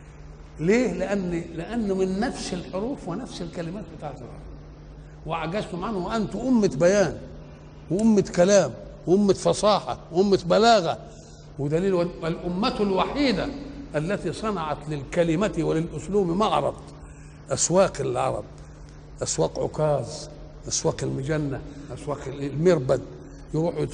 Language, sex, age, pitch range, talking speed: Arabic, male, 60-79, 145-190 Hz, 90 wpm